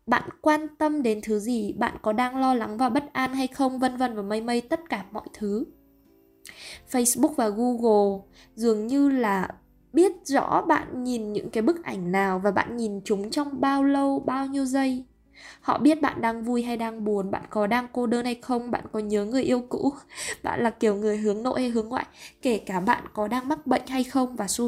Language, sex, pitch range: Vietnamese, female, 205-255 Hz